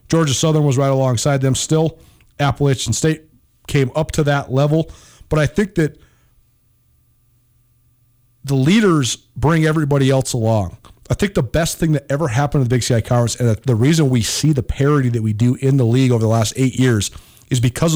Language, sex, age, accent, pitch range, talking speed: English, male, 40-59, American, 120-155 Hz, 190 wpm